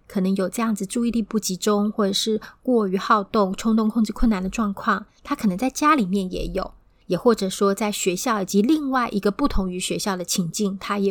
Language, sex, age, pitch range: Chinese, female, 30-49, 195-240 Hz